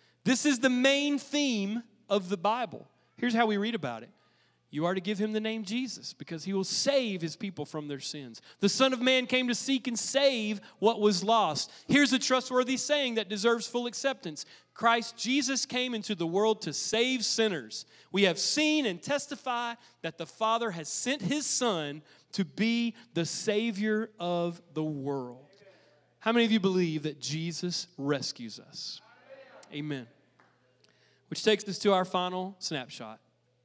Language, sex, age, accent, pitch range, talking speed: English, male, 40-59, American, 150-225 Hz, 170 wpm